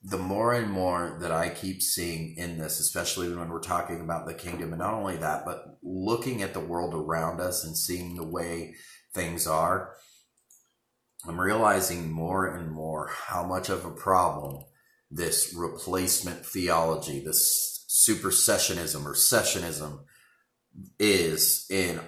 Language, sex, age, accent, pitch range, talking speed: English, male, 30-49, American, 85-110 Hz, 145 wpm